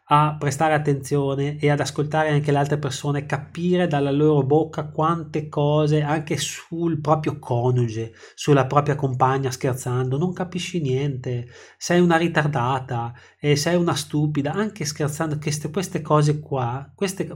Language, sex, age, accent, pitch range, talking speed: Italian, male, 20-39, native, 130-155 Hz, 140 wpm